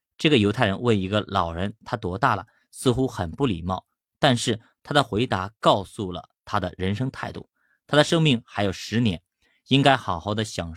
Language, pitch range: Chinese, 95-135 Hz